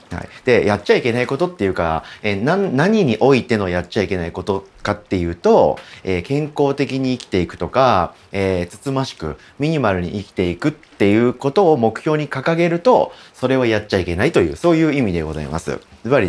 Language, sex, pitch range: Japanese, male, 90-145 Hz